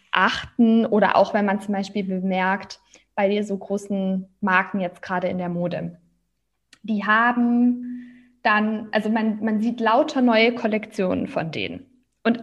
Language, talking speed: German, 150 wpm